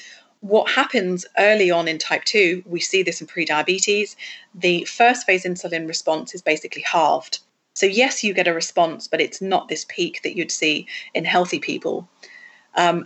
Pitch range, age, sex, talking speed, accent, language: 170-205 Hz, 30-49, female, 175 wpm, British, English